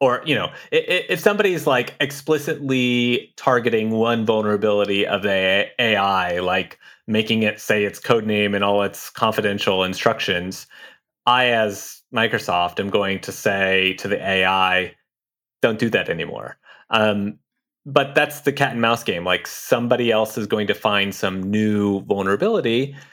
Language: English